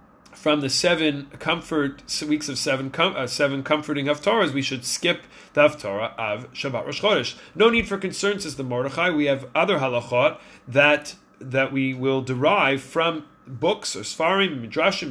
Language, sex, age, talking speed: English, male, 30-49, 165 wpm